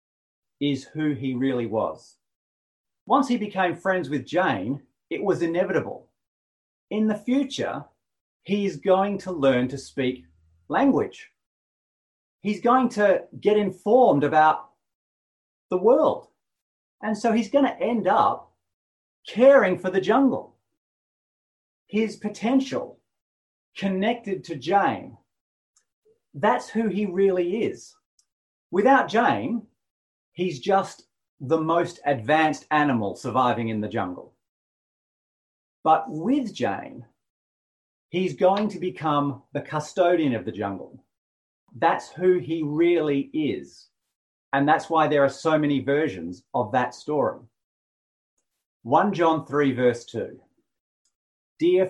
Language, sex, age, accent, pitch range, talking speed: English, male, 30-49, Australian, 140-210 Hz, 115 wpm